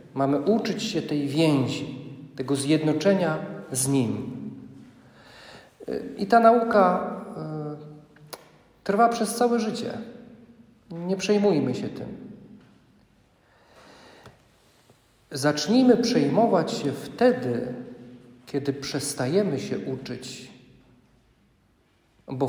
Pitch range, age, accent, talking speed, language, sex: 135-205 Hz, 50-69, native, 75 wpm, Polish, male